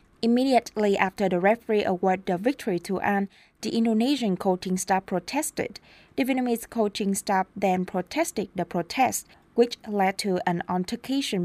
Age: 20-39